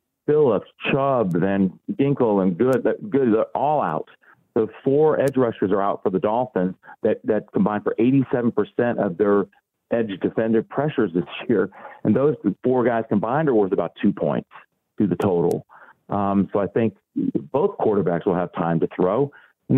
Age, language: 40-59, English